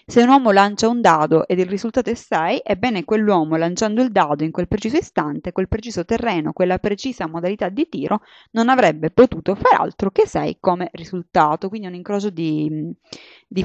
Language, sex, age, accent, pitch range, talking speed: Italian, female, 20-39, native, 170-220 Hz, 185 wpm